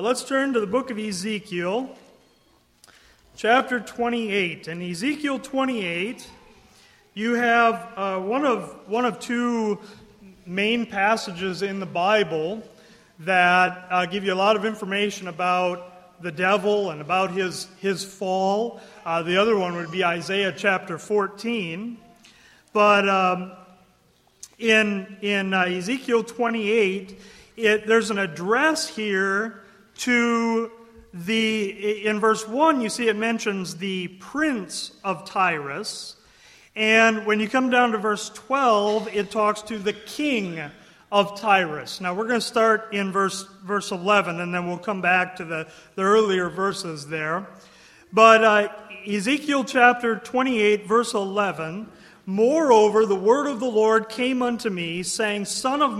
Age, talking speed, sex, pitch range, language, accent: 40-59, 140 wpm, male, 190-230 Hz, English, American